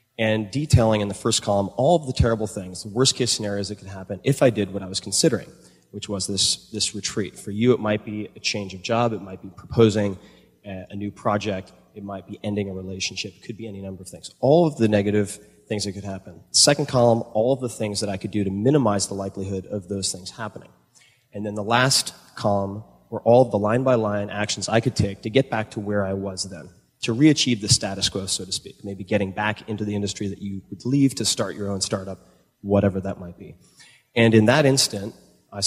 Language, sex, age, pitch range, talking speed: English, male, 30-49, 100-115 Hz, 235 wpm